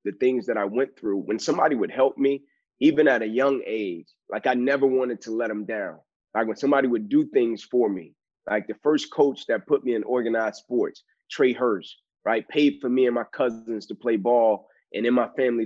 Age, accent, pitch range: 30-49, American, 120-195 Hz